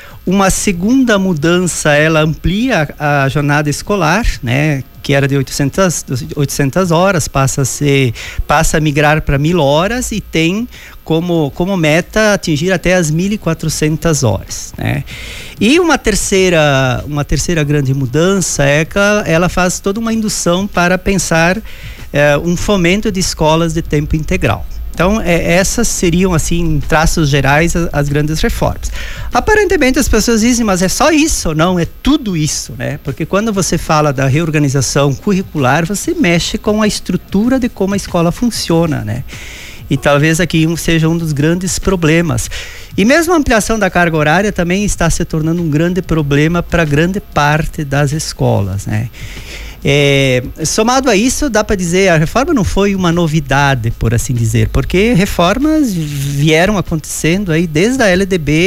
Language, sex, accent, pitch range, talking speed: Portuguese, male, Brazilian, 145-190 Hz, 150 wpm